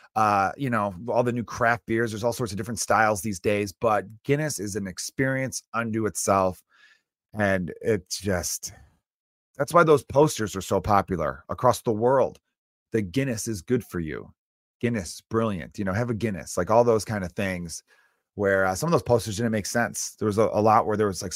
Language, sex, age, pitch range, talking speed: English, male, 30-49, 95-120 Hz, 205 wpm